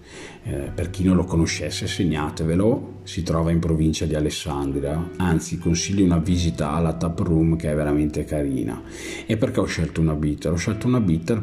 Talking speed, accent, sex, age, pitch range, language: 180 wpm, native, male, 40-59, 80-95 Hz, Italian